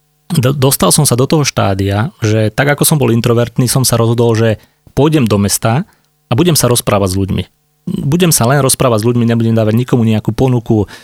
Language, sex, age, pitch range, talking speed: Slovak, male, 30-49, 110-135 Hz, 195 wpm